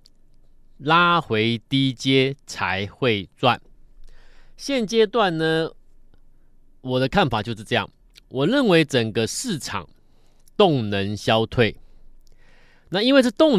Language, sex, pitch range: Chinese, male, 110-145 Hz